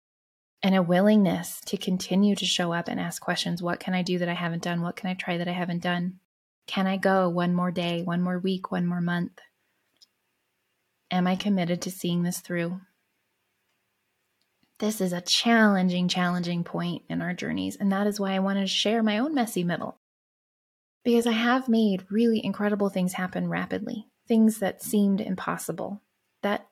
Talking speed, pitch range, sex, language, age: 180 wpm, 180-215 Hz, female, English, 20-39